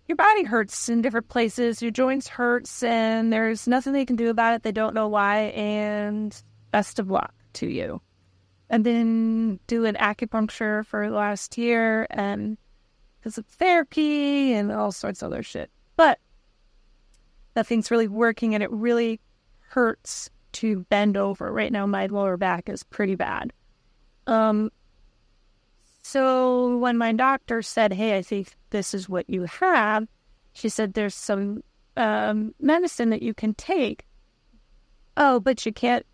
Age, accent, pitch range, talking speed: 30-49, American, 210-245 Hz, 155 wpm